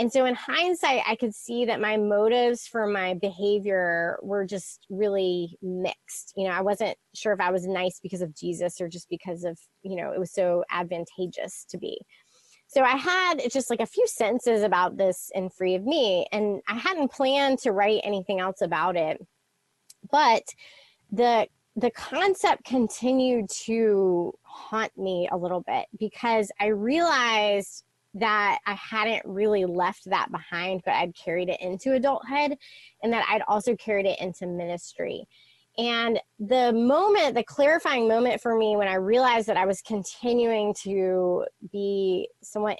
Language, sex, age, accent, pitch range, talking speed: English, female, 20-39, American, 190-235 Hz, 165 wpm